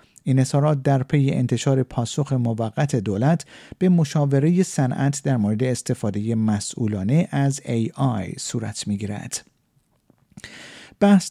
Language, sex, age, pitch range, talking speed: Persian, male, 50-69, 125-160 Hz, 110 wpm